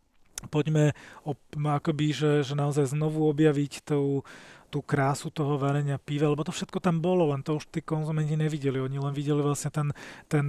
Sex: male